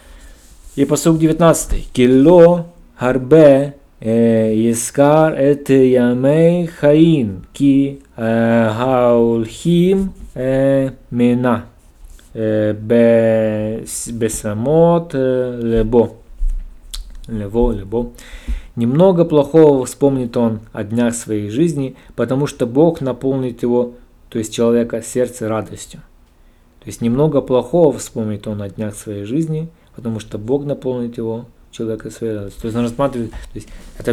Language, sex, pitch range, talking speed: Russian, male, 110-130 Hz, 100 wpm